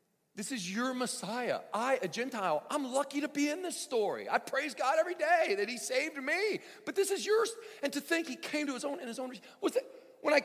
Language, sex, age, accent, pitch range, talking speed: English, male, 40-59, American, 185-300 Hz, 240 wpm